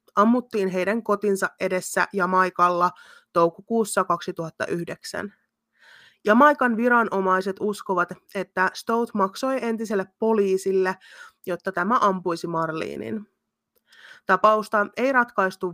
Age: 20-39